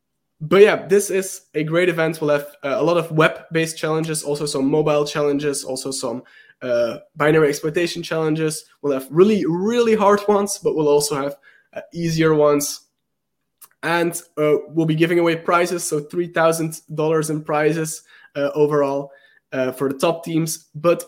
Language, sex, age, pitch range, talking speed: English, male, 20-39, 140-170 Hz, 160 wpm